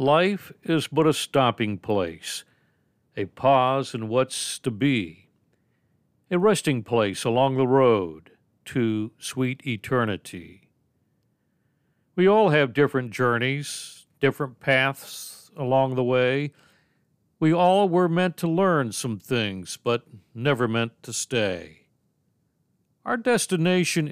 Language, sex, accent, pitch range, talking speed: English, male, American, 115-155 Hz, 115 wpm